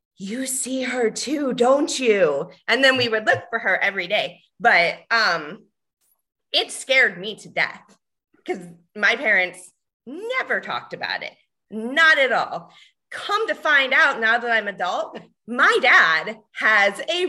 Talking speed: 155 wpm